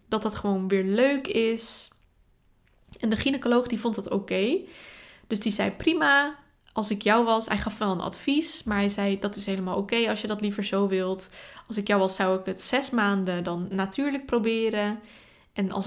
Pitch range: 195-225 Hz